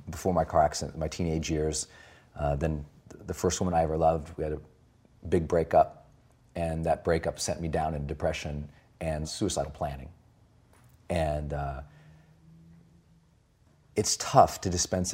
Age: 40-59